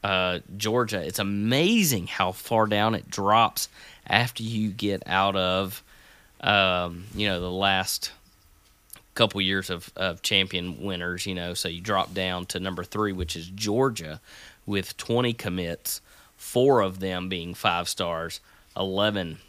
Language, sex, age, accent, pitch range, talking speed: English, male, 30-49, American, 90-105 Hz, 145 wpm